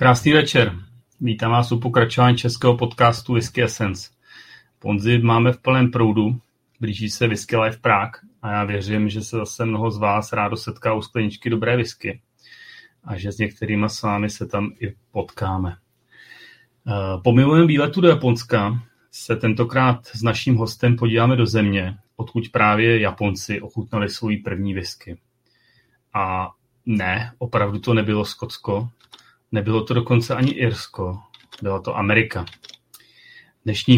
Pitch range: 105-120 Hz